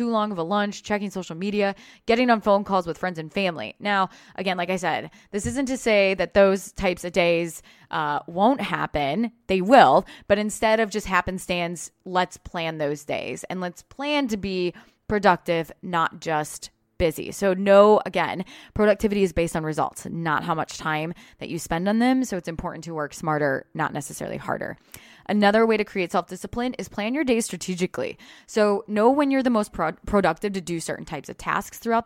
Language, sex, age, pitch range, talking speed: English, female, 20-39, 165-210 Hz, 195 wpm